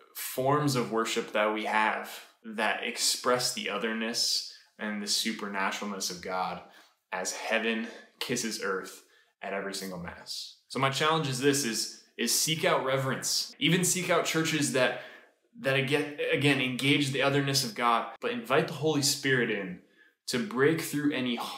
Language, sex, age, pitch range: English, male, 20-39, 110-140 Hz